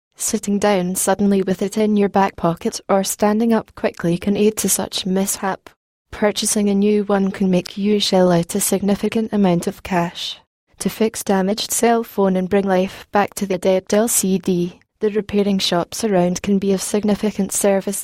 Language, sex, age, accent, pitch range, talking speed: English, female, 20-39, British, 190-215 Hz, 180 wpm